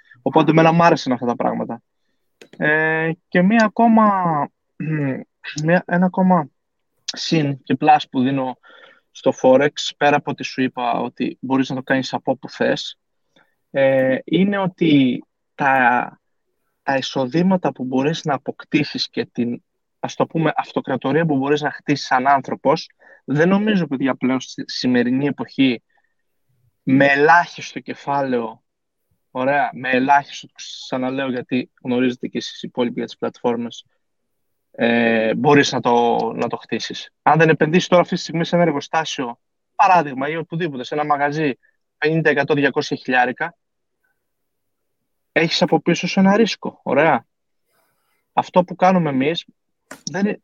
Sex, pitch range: male, 130-170 Hz